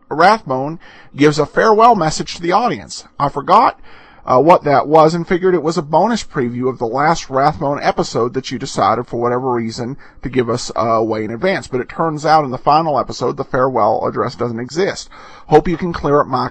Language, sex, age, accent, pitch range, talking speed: English, male, 40-59, American, 125-165 Hz, 210 wpm